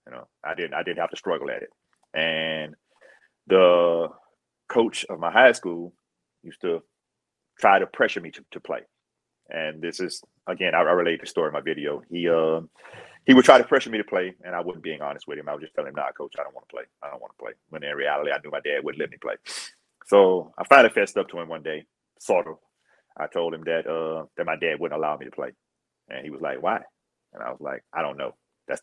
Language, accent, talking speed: English, American, 255 wpm